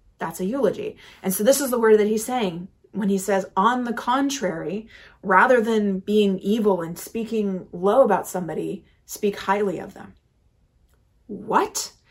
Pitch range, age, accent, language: 195-245 Hz, 30-49, American, English